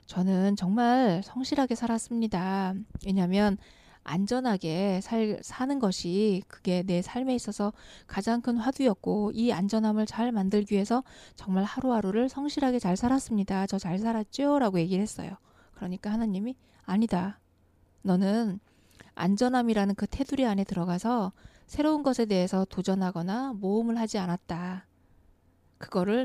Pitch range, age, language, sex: 190-230 Hz, 20-39, Korean, female